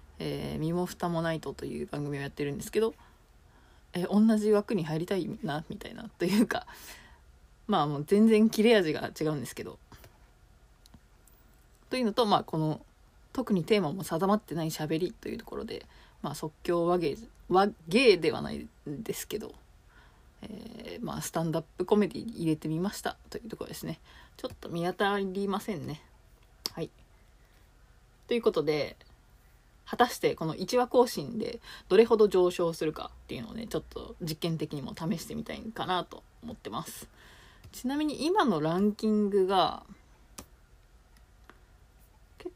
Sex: female